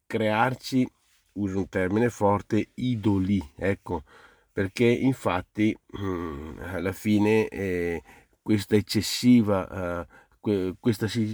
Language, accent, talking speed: Italian, native, 85 wpm